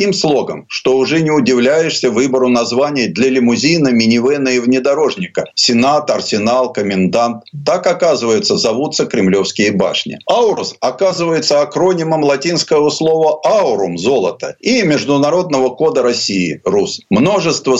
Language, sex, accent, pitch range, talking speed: Russian, male, native, 115-160 Hz, 110 wpm